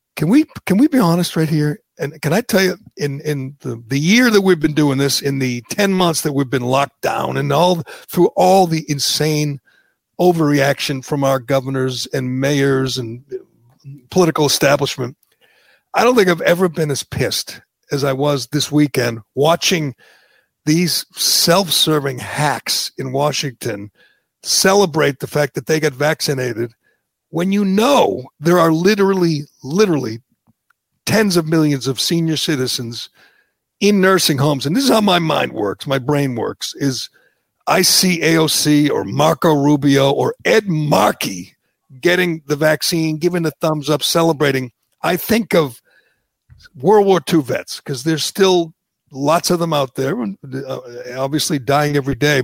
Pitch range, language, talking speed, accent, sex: 135-175 Hz, English, 155 wpm, American, male